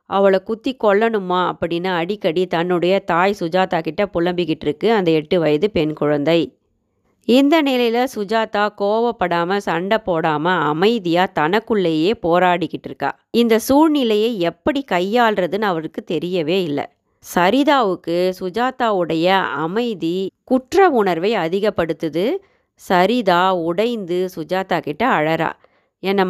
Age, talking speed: 30-49, 105 wpm